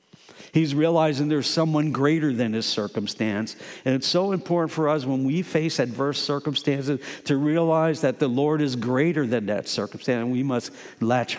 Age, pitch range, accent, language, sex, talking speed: 60-79, 125-160 Hz, American, English, male, 175 wpm